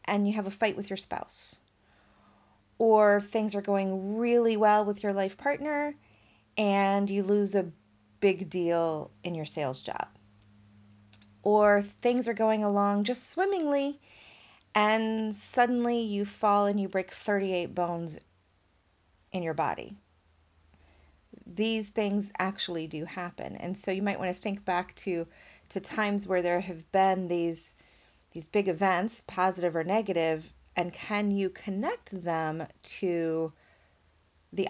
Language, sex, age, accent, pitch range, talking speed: English, female, 30-49, American, 140-205 Hz, 140 wpm